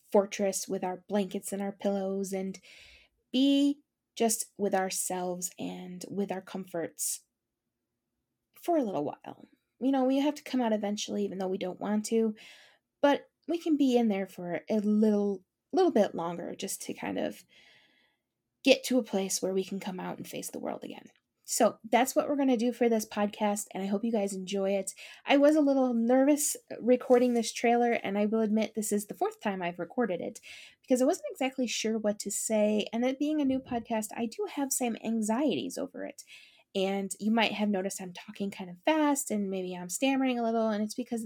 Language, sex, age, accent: English, female, 20-39, American